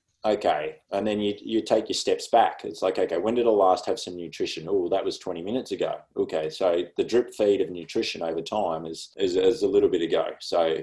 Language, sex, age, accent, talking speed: English, male, 20-39, Australian, 235 wpm